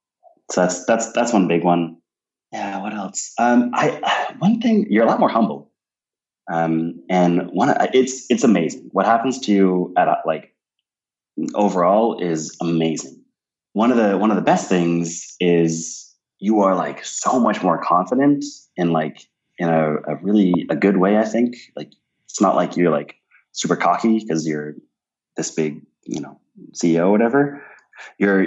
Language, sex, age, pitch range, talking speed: English, male, 20-39, 80-105 Hz, 165 wpm